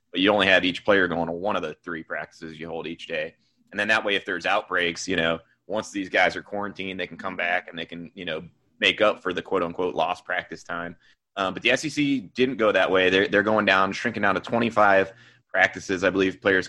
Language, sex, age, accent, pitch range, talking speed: English, male, 30-49, American, 85-105 Hz, 245 wpm